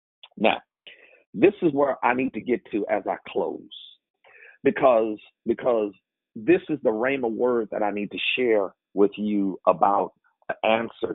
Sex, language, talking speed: male, English, 155 wpm